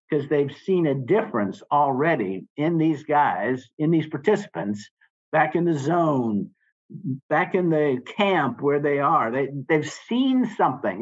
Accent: American